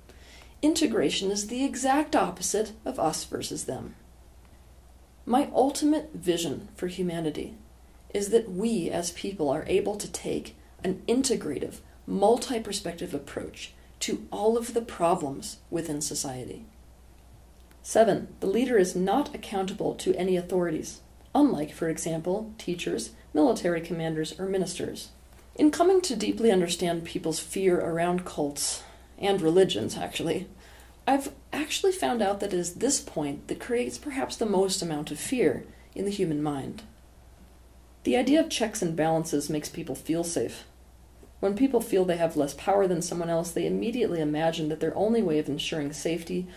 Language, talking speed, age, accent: English, 145 wpm, 40-59, American